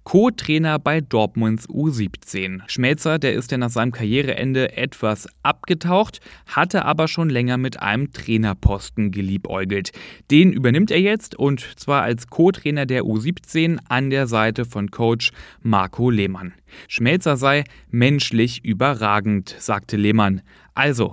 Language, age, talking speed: German, 30-49, 130 wpm